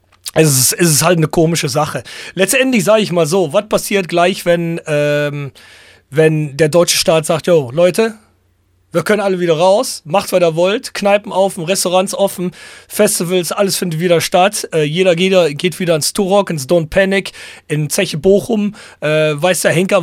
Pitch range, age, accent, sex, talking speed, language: 155-195 Hz, 40-59, German, male, 180 wpm, English